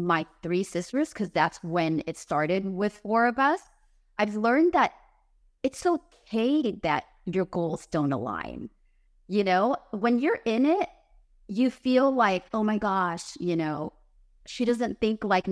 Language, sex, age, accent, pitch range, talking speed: English, female, 30-49, American, 180-240 Hz, 155 wpm